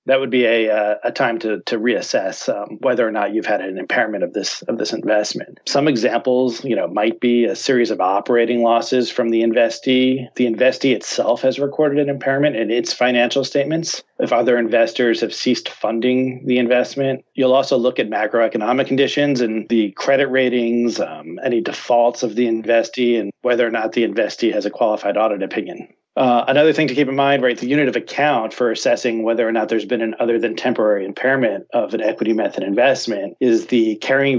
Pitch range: 115-130 Hz